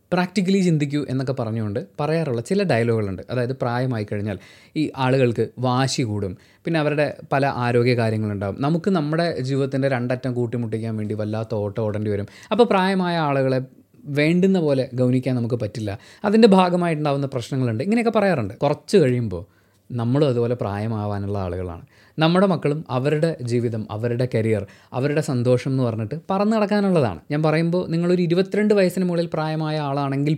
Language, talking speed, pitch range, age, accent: Malayalam, 130 wpm, 120-165 Hz, 20-39, native